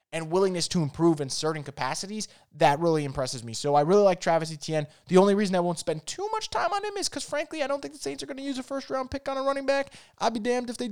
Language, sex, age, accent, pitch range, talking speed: English, male, 20-39, American, 155-200 Hz, 290 wpm